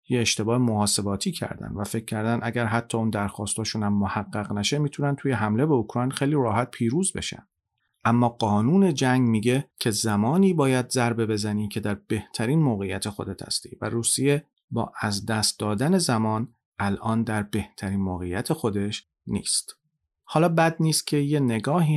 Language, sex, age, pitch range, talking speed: Persian, male, 40-59, 105-135 Hz, 155 wpm